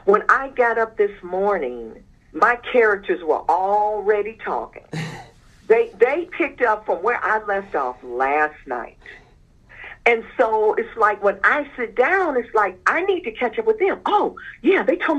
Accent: American